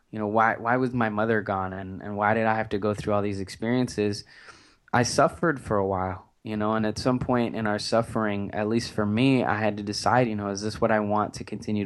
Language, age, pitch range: English, 20-39, 100-115 Hz